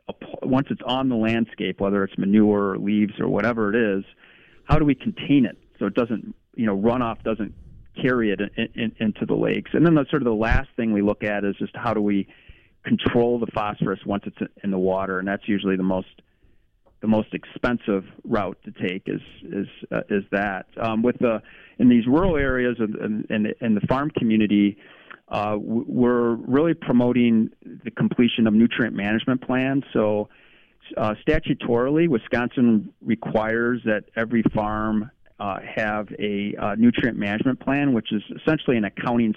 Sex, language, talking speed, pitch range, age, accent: male, English, 180 wpm, 105-125 Hz, 40-59, American